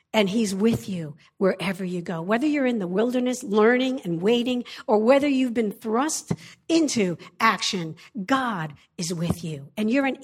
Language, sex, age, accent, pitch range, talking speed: English, female, 50-69, American, 195-265 Hz, 170 wpm